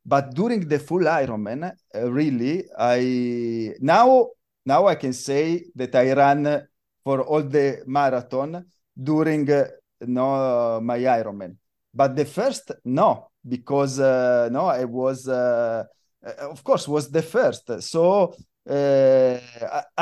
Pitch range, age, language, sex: 125-160 Hz, 30-49, English, male